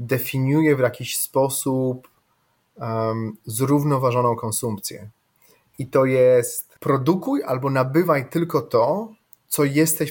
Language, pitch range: Polish, 120-145 Hz